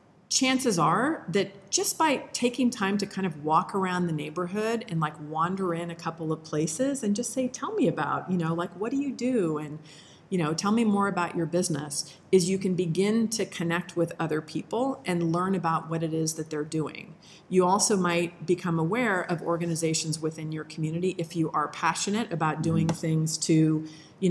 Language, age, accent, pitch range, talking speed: English, 40-59, American, 165-195 Hz, 200 wpm